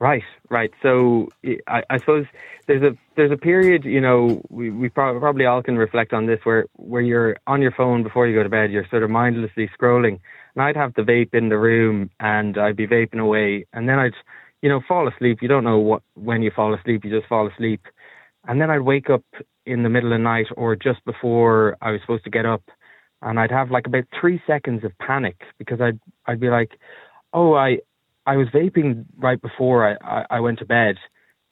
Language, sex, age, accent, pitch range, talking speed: English, male, 20-39, Irish, 110-130 Hz, 220 wpm